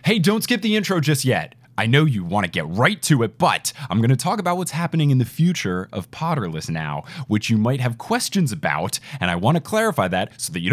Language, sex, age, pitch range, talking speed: English, male, 20-39, 110-165 Hz, 250 wpm